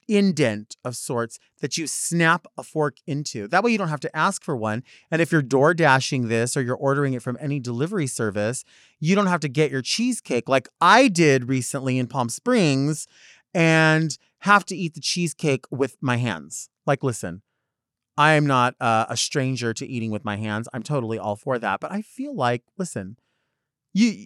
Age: 30-49